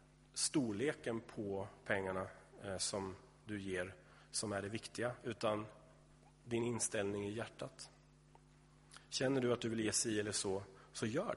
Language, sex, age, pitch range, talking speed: Swedish, male, 30-49, 105-130 Hz, 135 wpm